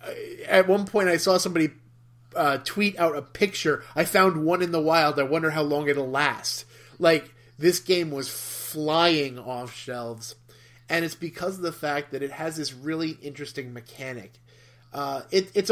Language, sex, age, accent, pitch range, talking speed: English, male, 30-49, American, 125-160 Hz, 175 wpm